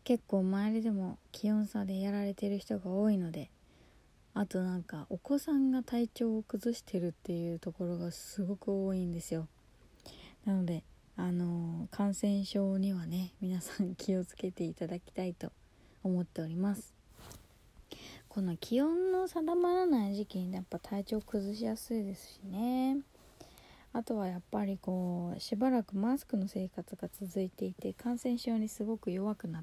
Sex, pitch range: female, 175-220 Hz